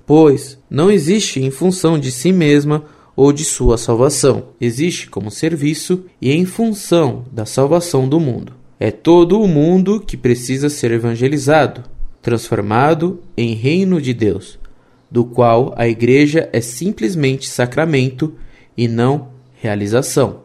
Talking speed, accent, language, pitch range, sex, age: 130 wpm, Brazilian, Portuguese, 125-160 Hz, male, 20-39